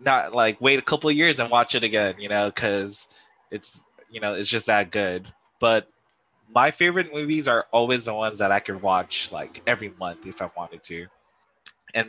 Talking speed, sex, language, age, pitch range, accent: 205 wpm, male, English, 20-39, 100-125 Hz, American